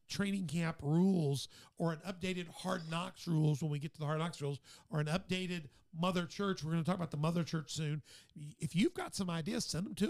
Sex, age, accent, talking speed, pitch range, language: male, 50-69, American, 230 wpm, 135-185 Hz, English